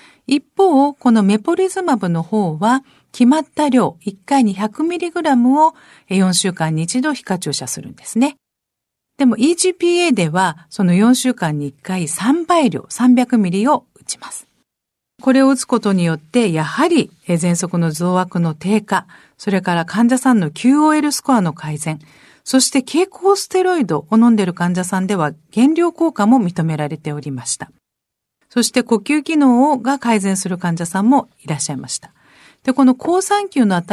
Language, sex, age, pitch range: Japanese, female, 50-69, 180-285 Hz